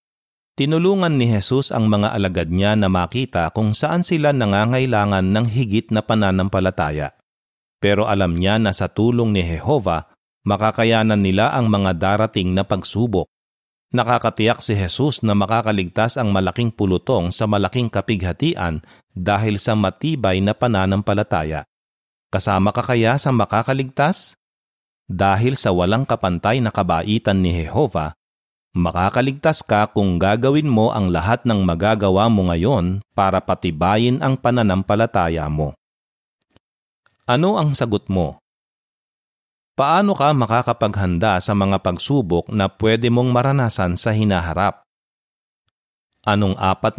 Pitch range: 95-120 Hz